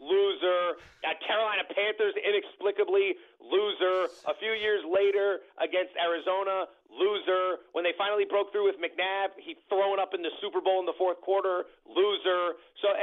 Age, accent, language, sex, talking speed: 40-59, American, English, male, 145 wpm